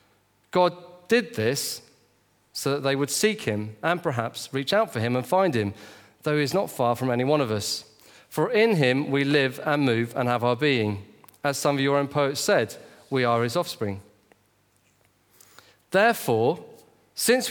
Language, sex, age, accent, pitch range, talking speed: English, male, 40-59, British, 115-170 Hz, 180 wpm